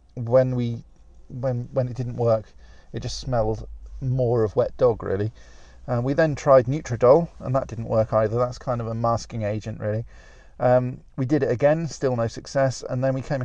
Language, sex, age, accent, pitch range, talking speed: English, male, 40-59, British, 110-135 Hz, 195 wpm